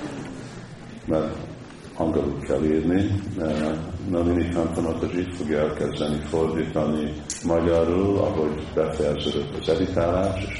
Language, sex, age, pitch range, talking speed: Hungarian, male, 50-69, 75-85 Hz, 100 wpm